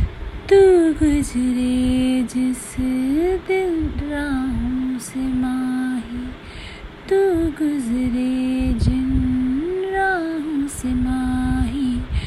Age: 20-39